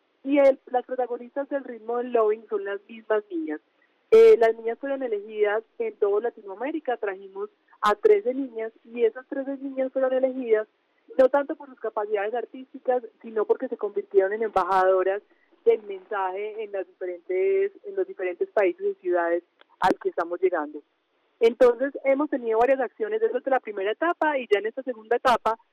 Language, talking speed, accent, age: Spanish, 170 wpm, Colombian, 30-49